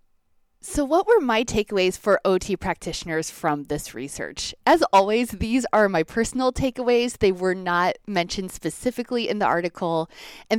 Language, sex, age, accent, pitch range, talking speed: English, female, 20-39, American, 170-225 Hz, 155 wpm